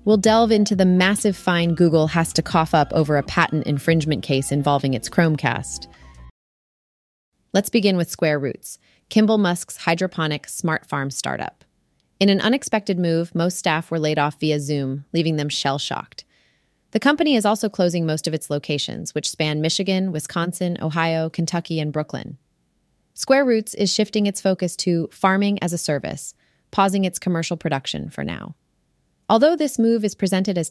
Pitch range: 150-195 Hz